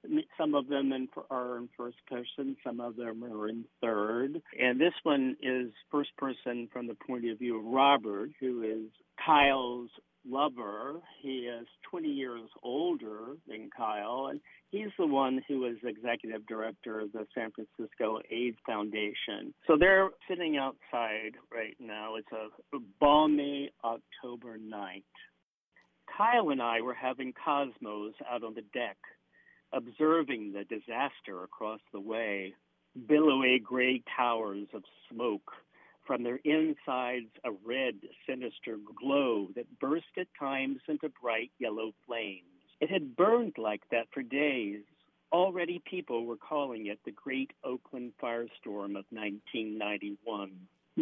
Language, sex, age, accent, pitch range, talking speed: English, male, 50-69, American, 110-140 Hz, 135 wpm